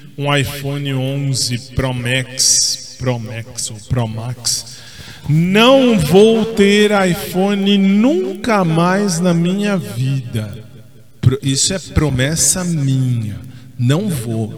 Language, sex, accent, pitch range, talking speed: Portuguese, male, Brazilian, 125-165 Hz, 105 wpm